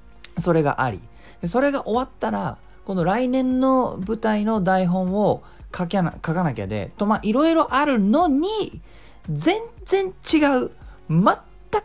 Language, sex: Japanese, male